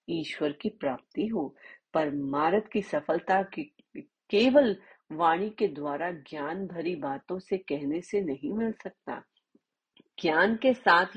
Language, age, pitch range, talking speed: Hindi, 30-49, 150-210 Hz, 130 wpm